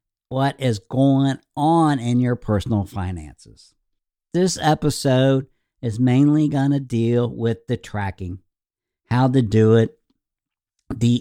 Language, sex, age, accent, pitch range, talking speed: English, male, 60-79, American, 105-135 Hz, 125 wpm